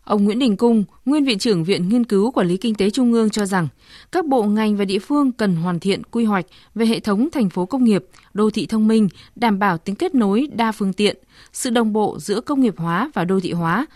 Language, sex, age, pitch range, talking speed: Vietnamese, female, 20-39, 195-245 Hz, 255 wpm